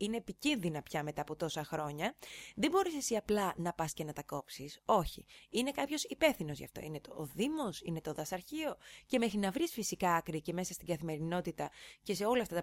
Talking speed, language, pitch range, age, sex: 215 wpm, Greek, 165-240 Hz, 20-39, female